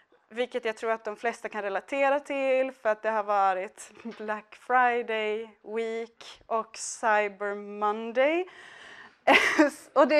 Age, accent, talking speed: 20-39, Norwegian, 130 wpm